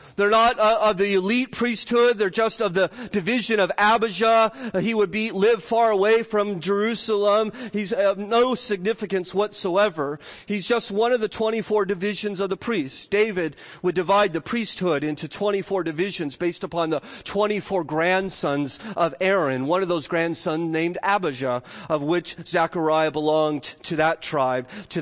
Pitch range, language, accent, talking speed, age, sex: 170-210 Hz, English, American, 155 wpm, 40-59, male